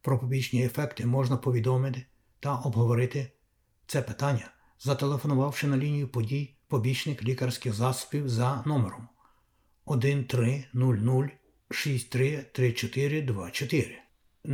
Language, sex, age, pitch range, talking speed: Ukrainian, male, 60-79, 120-140 Hz, 80 wpm